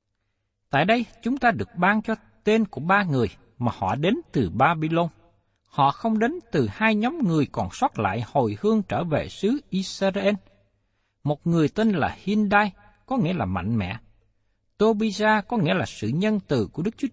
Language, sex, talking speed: Vietnamese, male, 180 wpm